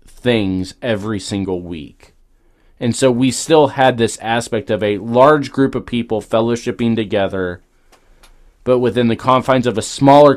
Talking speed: 150 wpm